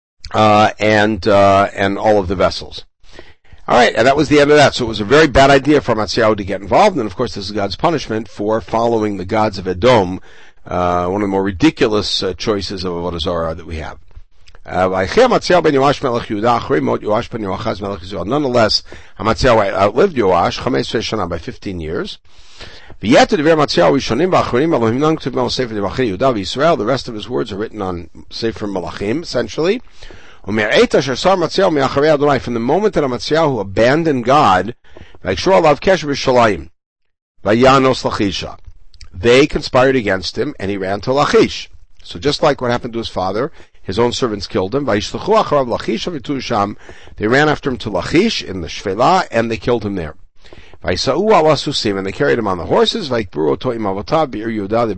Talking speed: 135 wpm